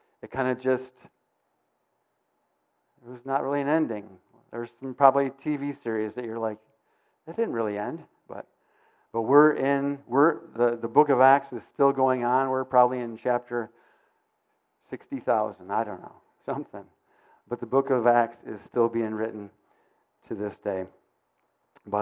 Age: 50-69